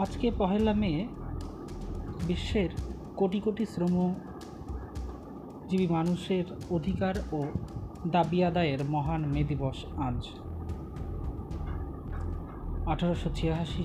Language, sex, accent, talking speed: Bengali, male, native, 75 wpm